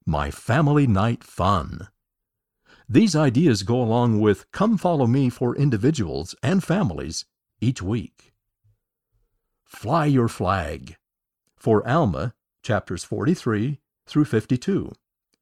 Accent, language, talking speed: American, English, 105 wpm